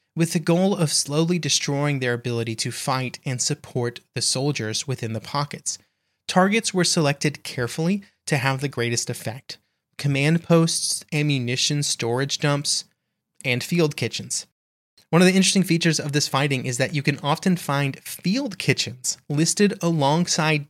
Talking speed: 150 wpm